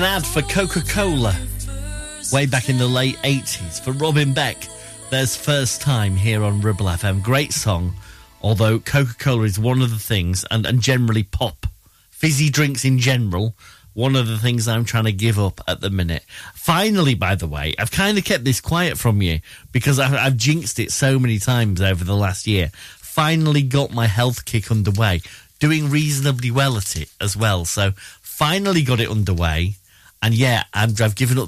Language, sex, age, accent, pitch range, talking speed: English, male, 30-49, British, 95-130 Hz, 185 wpm